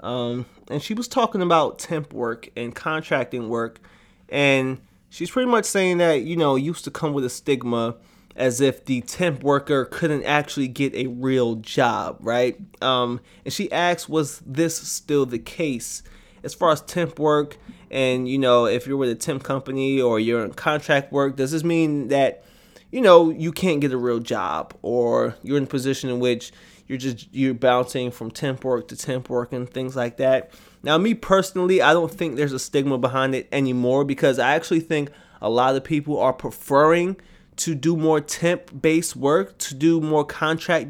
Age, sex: 20-39, male